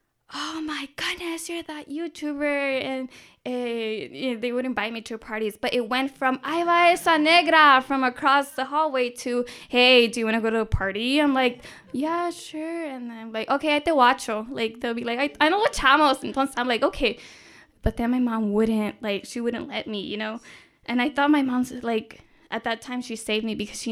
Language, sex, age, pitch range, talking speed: English, female, 10-29, 220-270 Hz, 215 wpm